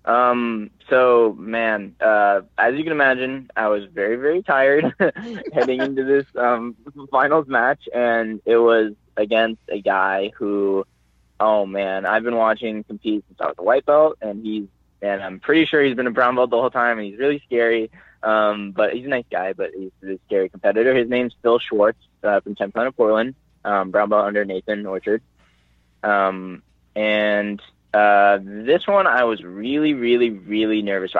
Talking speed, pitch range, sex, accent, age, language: 180 wpm, 105-130 Hz, male, American, 10-29, English